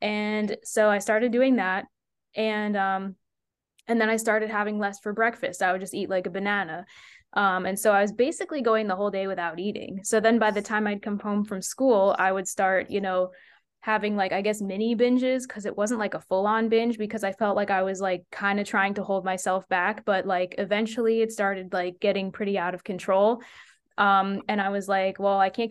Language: English